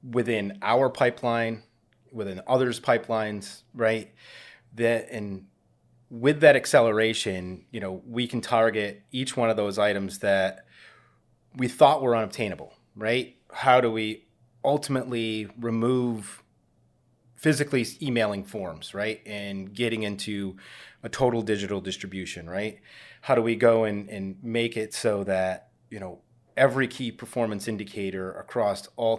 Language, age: English, 30-49